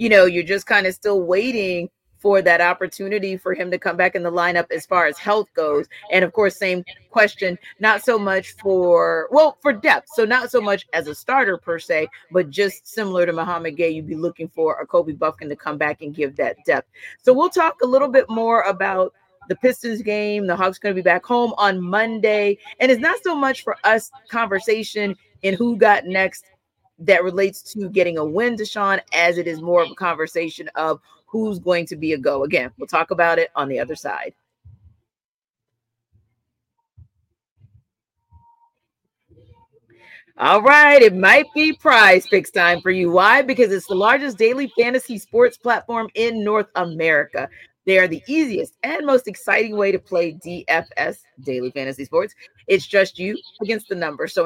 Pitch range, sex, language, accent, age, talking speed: 170-230 Hz, female, English, American, 30-49, 190 wpm